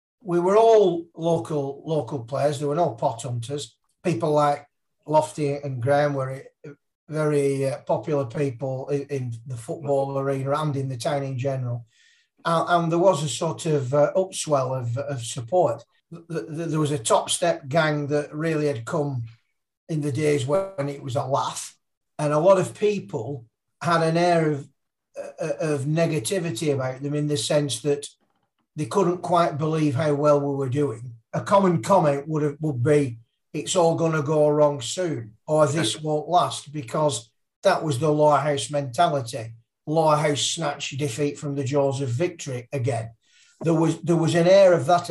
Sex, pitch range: male, 140-165 Hz